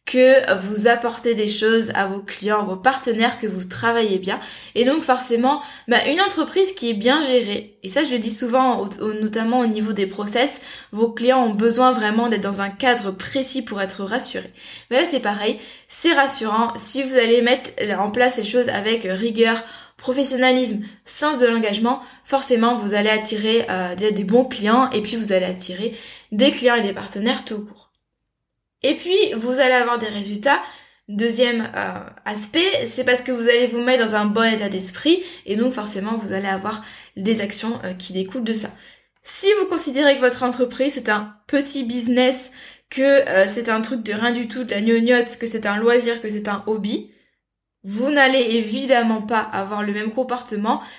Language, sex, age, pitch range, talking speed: French, female, 20-39, 215-260 Hz, 190 wpm